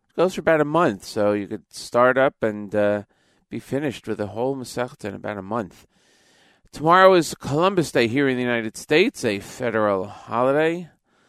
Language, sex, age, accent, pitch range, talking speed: English, male, 40-59, American, 95-125 Hz, 180 wpm